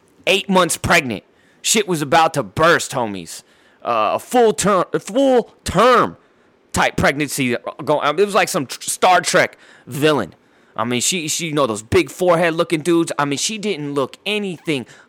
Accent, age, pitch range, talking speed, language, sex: American, 30-49, 130-175 Hz, 165 wpm, English, male